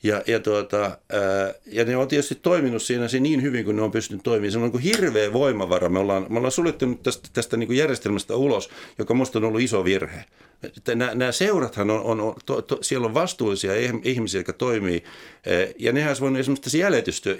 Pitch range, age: 105-140 Hz, 60-79